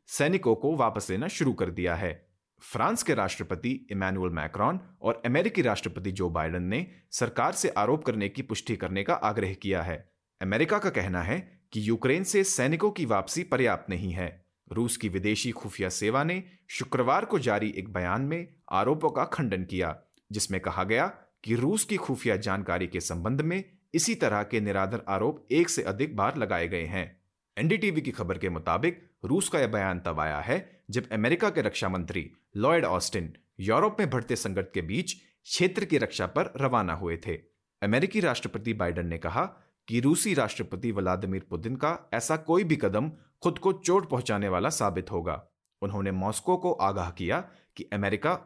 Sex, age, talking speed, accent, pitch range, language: male, 30-49, 130 wpm, native, 95-140 Hz, Hindi